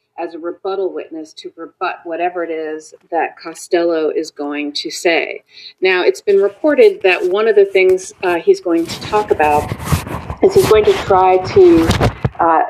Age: 40-59